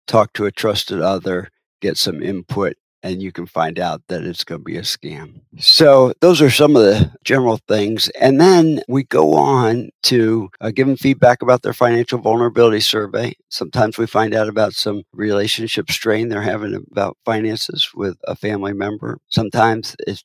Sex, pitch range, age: male, 105-125 Hz, 60-79